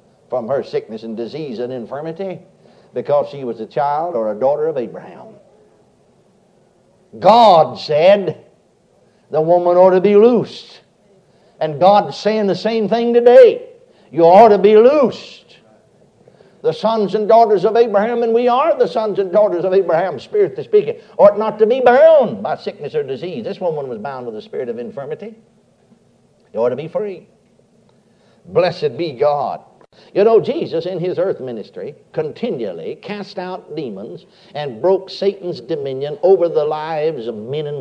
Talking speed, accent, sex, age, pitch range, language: 160 wpm, American, male, 60-79, 165-225 Hz, English